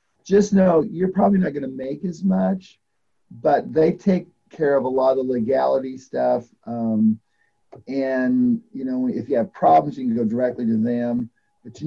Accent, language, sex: American, English, male